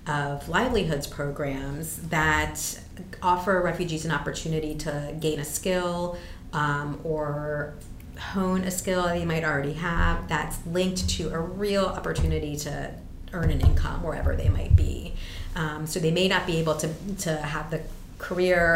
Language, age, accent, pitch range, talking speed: English, 30-49, American, 140-170 Hz, 150 wpm